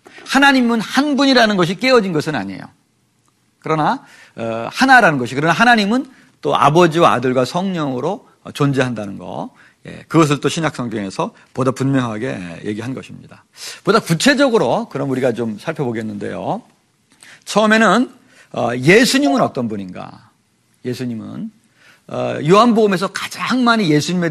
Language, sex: Korean, male